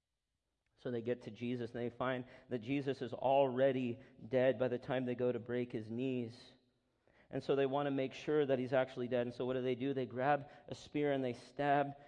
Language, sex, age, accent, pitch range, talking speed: English, male, 40-59, American, 120-140 Hz, 230 wpm